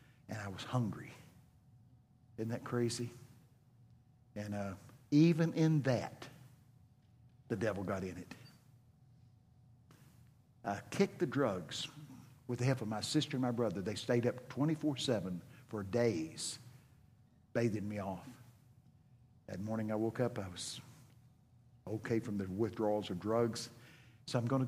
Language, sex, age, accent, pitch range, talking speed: English, male, 50-69, American, 115-135 Hz, 135 wpm